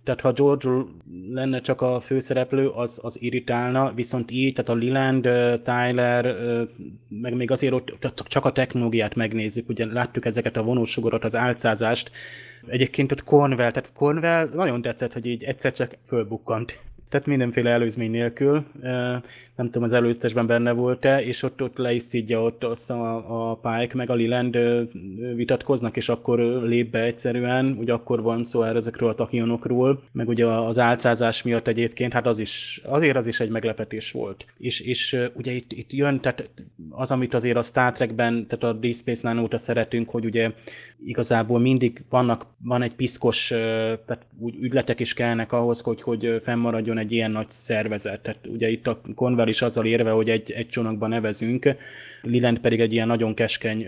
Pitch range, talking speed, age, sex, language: 115-125 Hz, 170 wpm, 20-39, male, Hungarian